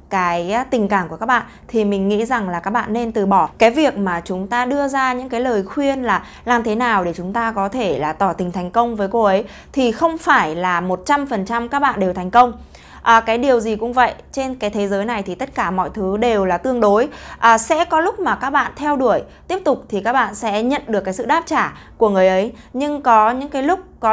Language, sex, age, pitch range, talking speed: Vietnamese, female, 20-39, 195-260 Hz, 265 wpm